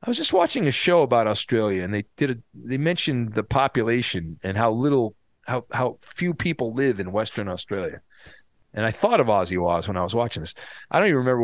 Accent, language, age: American, English, 40-59